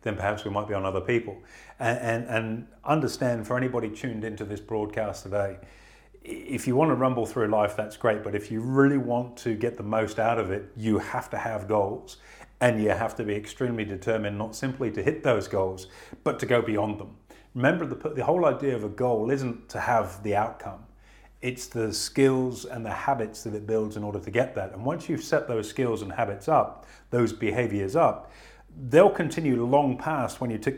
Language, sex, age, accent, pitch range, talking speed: English, male, 30-49, British, 105-125 Hz, 210 wpm